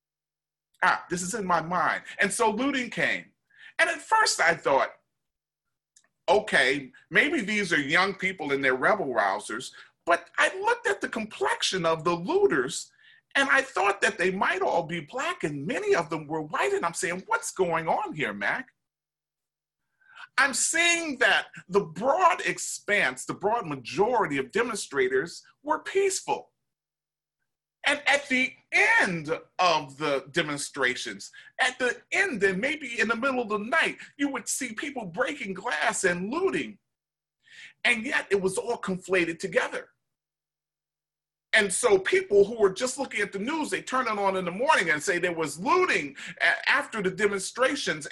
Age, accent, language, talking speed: 40-59, American, English, 160 wpm